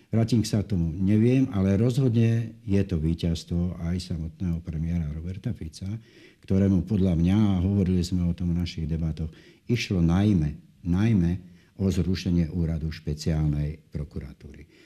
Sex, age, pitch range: male, 60-79, 80-95 Hz